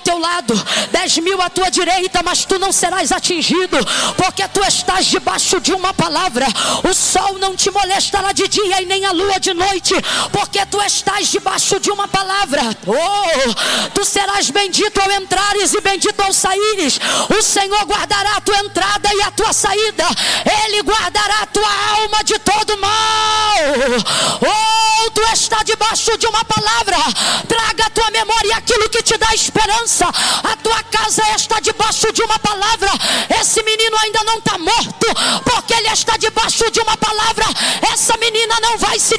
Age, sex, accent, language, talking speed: 20-39, female, Brazilian, Portuguese, 165 wpm